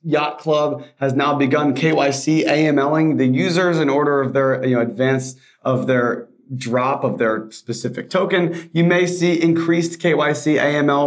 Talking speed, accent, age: 155 wpm, American, 30-49